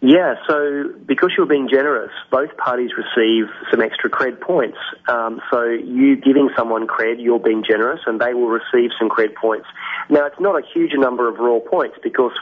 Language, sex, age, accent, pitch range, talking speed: English, male, 30-49, Australian, 115-145 Hz, 190 wpm